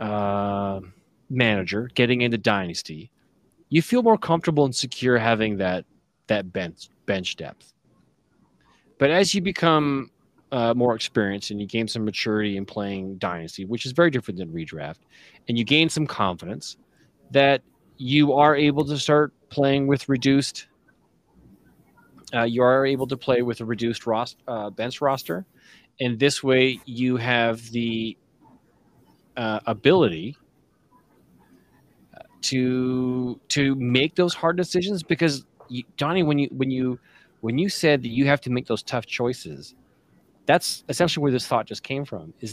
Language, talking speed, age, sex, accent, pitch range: English, 150 wpm, 30-49, male, American, 115-140 Hz